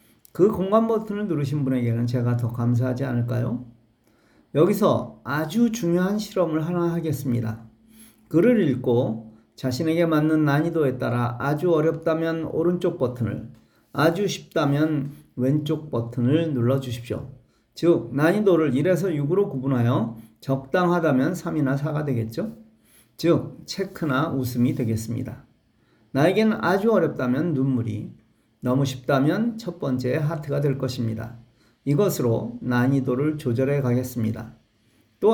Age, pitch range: 40-59, 120-165 Hz